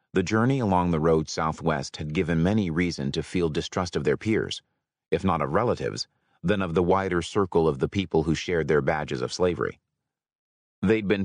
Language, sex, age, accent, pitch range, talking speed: English, male, 30-49, American, 80-105 Hz, 190 wpm